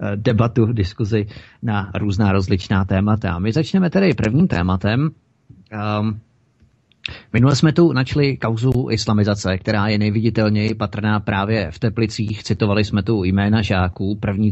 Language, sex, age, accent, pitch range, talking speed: Czech, male, 30-49, native, 105-120 Hz, 130 wpm